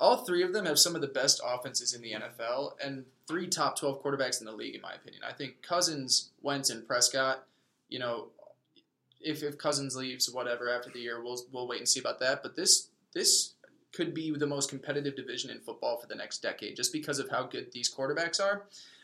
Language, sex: English, male